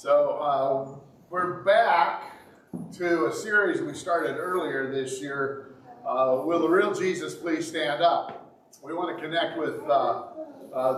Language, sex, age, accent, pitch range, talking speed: English, male, 50-69, American, 135-190 Hz, 150 wpm